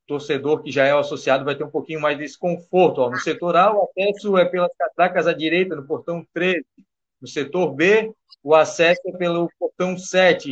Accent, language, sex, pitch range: Brazilian, Portuguese, male, 155-190 Hz